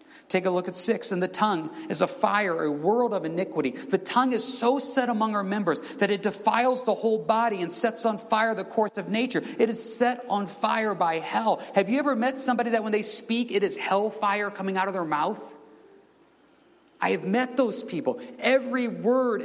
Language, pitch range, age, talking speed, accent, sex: English, 180-245 Hz, 40-59, 215 wpm, American, male